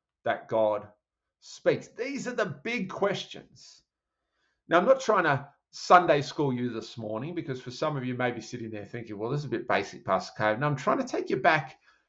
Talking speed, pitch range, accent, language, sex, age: 220 wpm, 120-165 Hz, Australian, English, male, 30-49